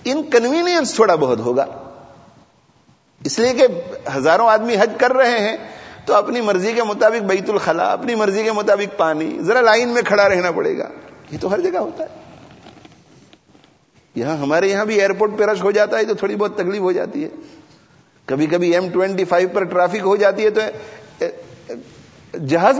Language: English